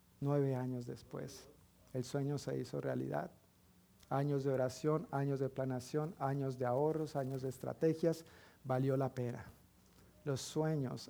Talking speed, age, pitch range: 135 wpm, 50-69, 135-175 Hz